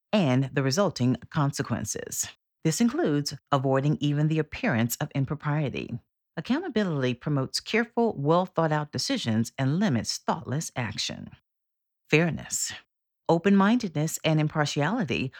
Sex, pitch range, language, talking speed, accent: female, 130-175 Hz, English, 95 wpm, American